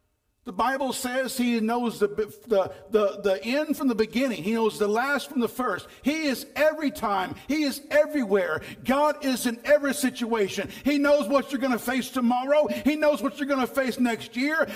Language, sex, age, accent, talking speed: English, male, 50-69, American, 200 wpm